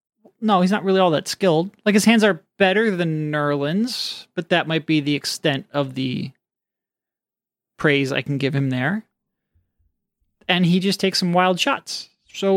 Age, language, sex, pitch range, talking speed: 30-49, English, male, 145-200 Hz, 170 wpm